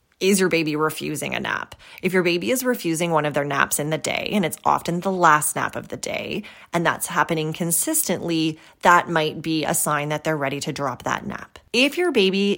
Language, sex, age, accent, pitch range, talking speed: English, female, 20-39, American, 155-190 Hz, 220 wpm